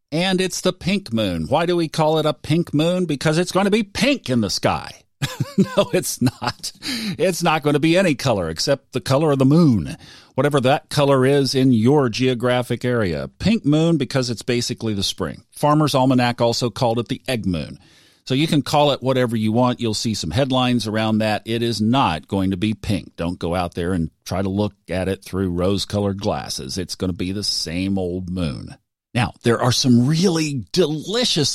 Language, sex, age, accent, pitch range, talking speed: English, male, 40-59, American, 105-145 Hz, 205 wpm